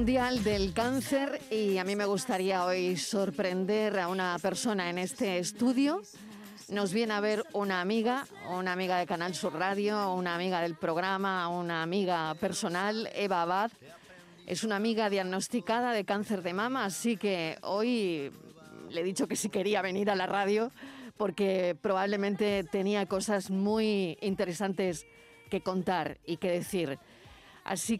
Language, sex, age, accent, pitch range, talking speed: Spanish, female, 40-59, Spanish, 180-215 Hz, 150 wpm